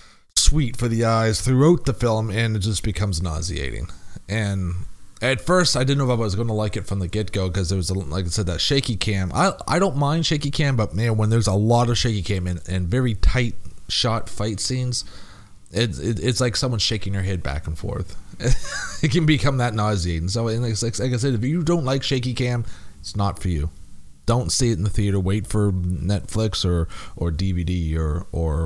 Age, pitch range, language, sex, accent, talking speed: 30-49, 90-120 Hz, English, male, American, 220 wpm